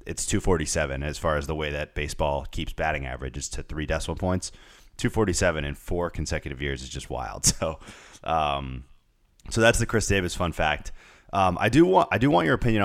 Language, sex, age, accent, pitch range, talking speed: English, male, 30-49, American, 80-105 Hz, 195 wpm